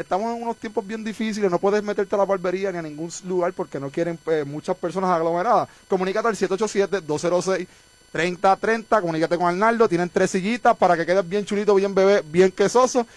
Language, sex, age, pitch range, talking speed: Spanish, male, 30-49, 180-225 Hz, 185 wpm